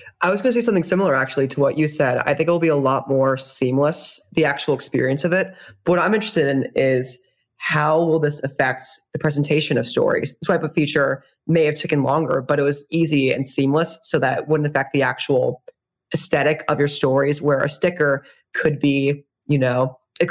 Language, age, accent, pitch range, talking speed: English, 20-39, American, 130-155 Hz, 215 wpm